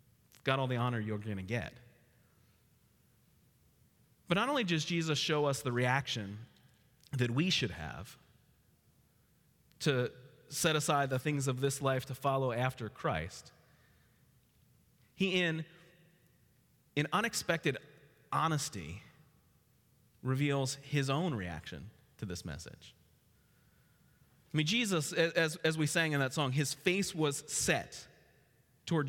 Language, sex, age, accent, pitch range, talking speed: English, male, 30-49, American, 130-170 Hz, 125 wpm